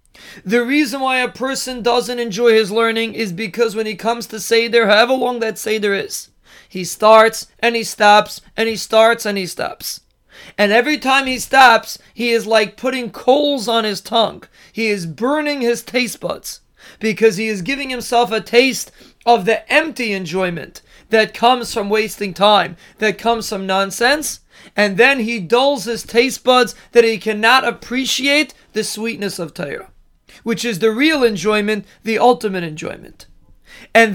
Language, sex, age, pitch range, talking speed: English, male, 30-49, 210-250 Hz, 165 wpm